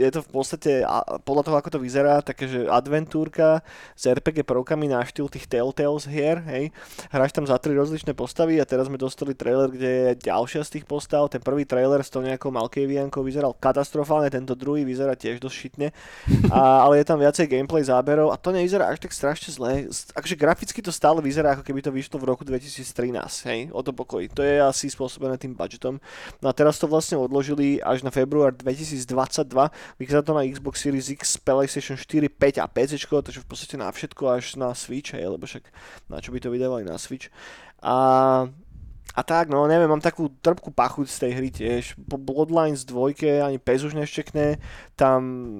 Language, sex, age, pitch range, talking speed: Slovak, male, 20-39, 130-150 Hz, 195 wpm